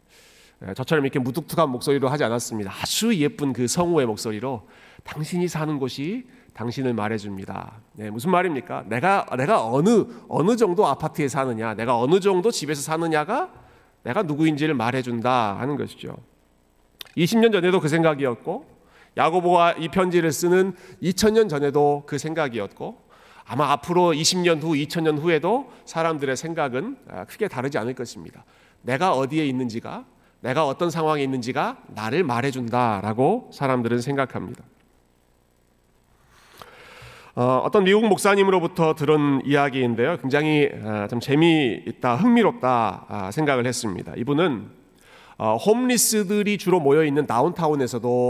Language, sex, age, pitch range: Korean, male, 40-59, 120-170 Hz